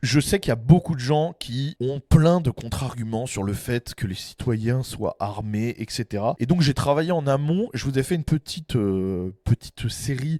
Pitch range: 115-160 Hz